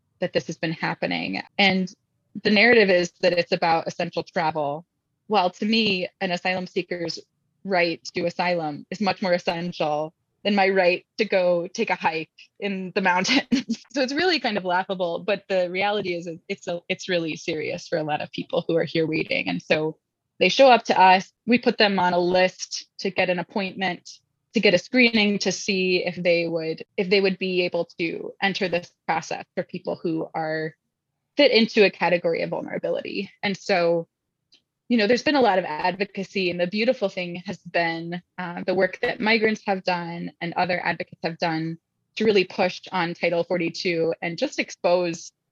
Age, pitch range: 20-39, 170-195 Hz